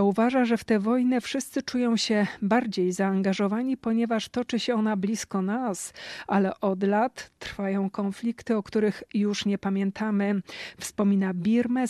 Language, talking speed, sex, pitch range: Polish, 140 wpm, female, 200-235 Hz